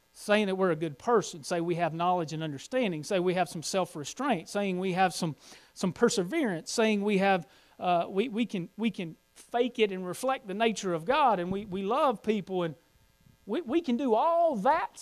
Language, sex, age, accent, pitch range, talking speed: English, male, 40-59, American, 160-220 Hz, 210 wpm